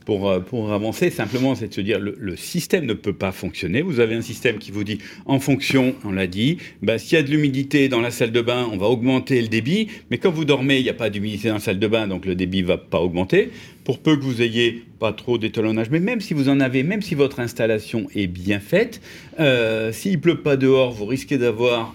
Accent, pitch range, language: French, 105-140 Hz, French